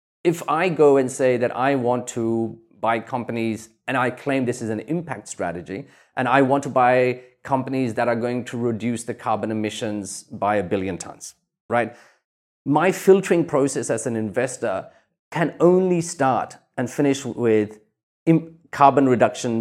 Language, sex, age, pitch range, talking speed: English, male, 30-49, 115-140 Hz, 160 wpm